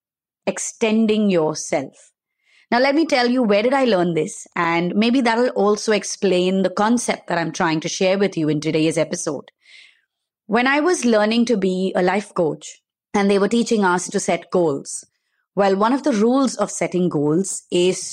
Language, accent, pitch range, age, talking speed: English, Indian, 180-245 Hz, 30-49, 185 wpm